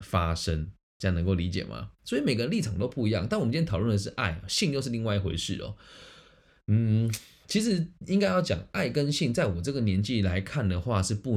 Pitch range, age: 95-125 Hz, 20-39